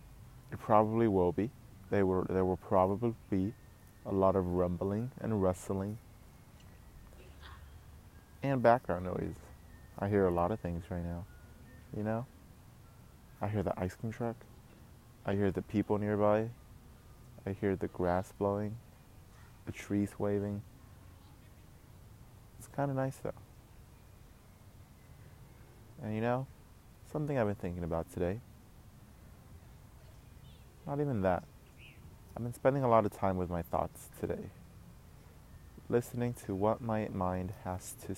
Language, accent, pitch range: English, American, 90-115 Hz